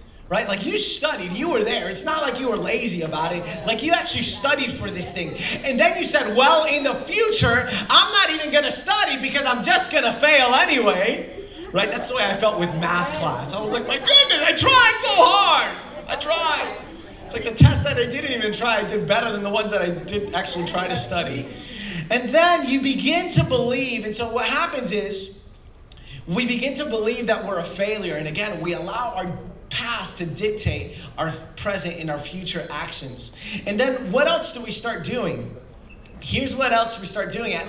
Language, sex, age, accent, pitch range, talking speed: Spanish, male, 30-49, American, 180-270 Hz, 210 wpm